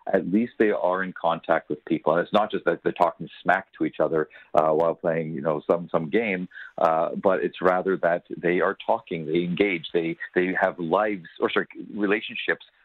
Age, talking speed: 50-69, 205 wpm